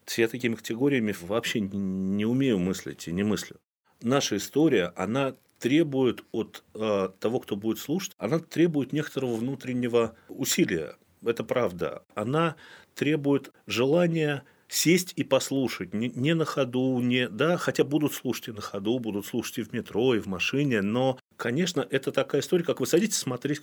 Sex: male